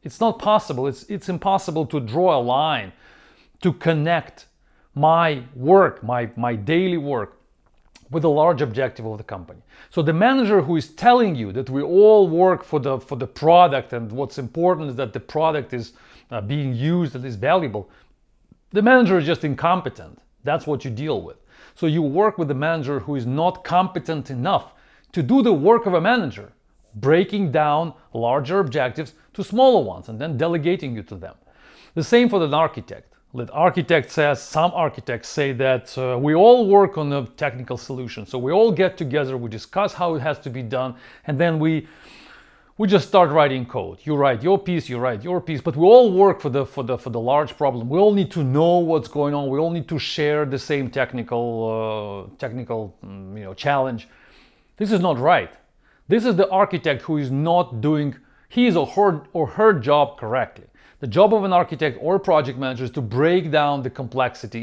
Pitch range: 130-175 Hz